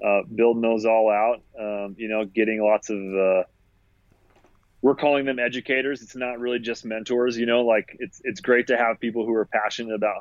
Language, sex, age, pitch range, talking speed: English, male, 30-49, 100-110 Hz, 200 wpm